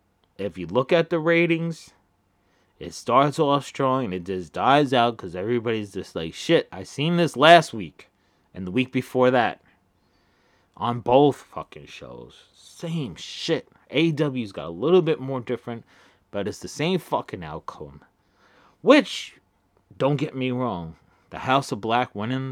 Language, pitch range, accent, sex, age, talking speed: English, 95-135 Hz, American, male, 30-49, 155 wpm